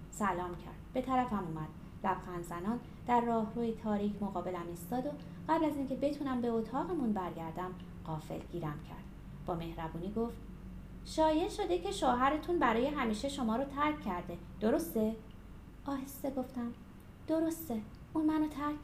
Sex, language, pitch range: female, Persian, 190-280 Hz